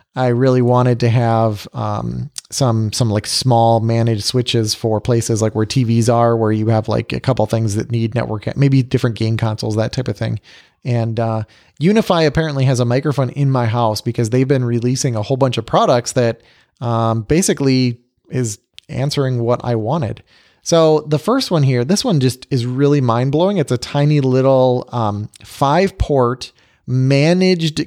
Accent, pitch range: American, 115-140 Hz